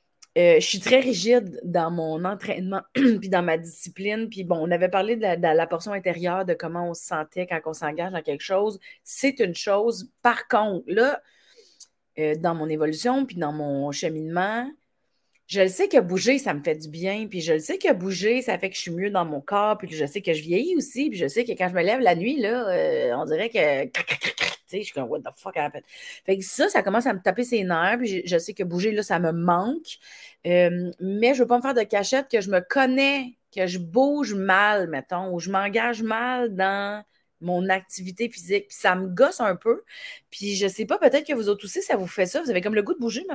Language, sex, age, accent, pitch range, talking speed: French, female, 30-49, Canadian, 180-250 Hz, 245 wpm